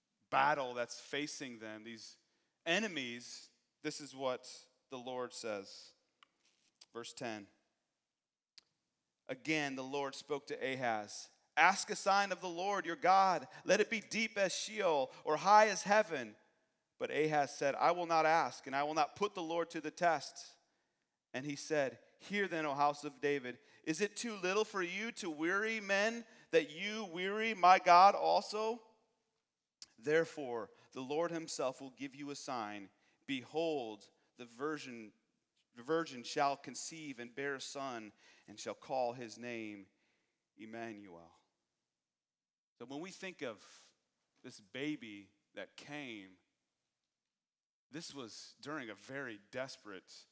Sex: male